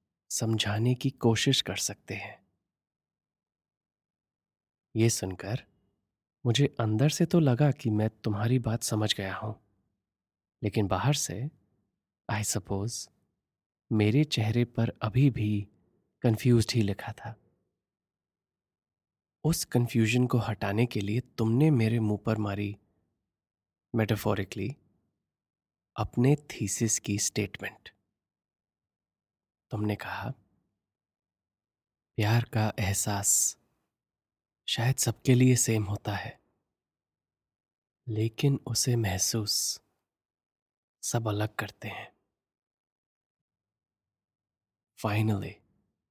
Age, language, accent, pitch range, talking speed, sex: 30-49, Hindi, native, 100-115 Hz, 90 wpm, male